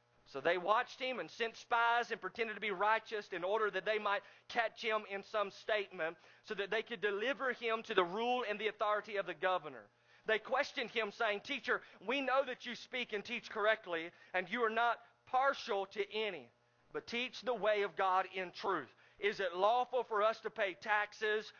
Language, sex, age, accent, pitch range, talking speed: English, male, 40-59, American, 180-220 Hz, 205 wpm